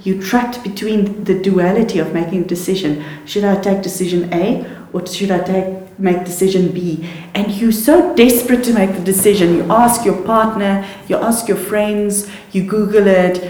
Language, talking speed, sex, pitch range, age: English, 180 wpm, female, 170-205 Hz, 40-59